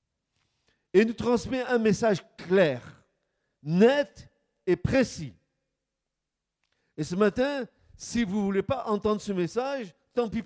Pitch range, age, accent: 160-250 Hz, 50-69, French